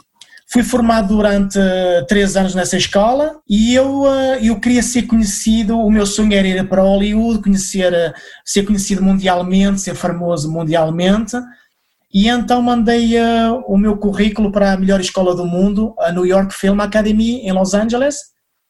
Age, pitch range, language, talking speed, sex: 20-39, 195-235 Hz, Portuguese, 150 wpm, male